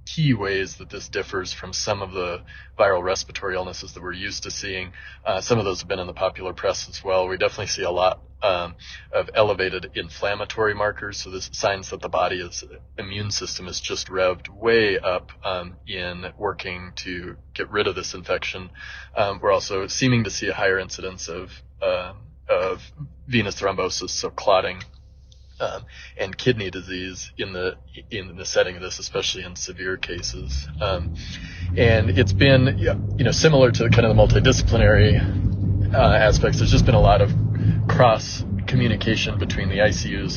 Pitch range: 90-115 Hz